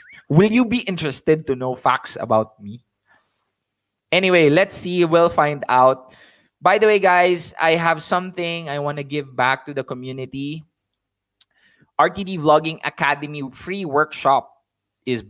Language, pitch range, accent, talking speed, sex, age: English, 120-155 Hz, Filipino, 140 wpm, male, 20-39